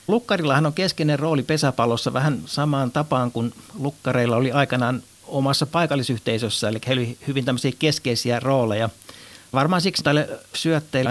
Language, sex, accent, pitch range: Finnish, male, native, 115-135 Hz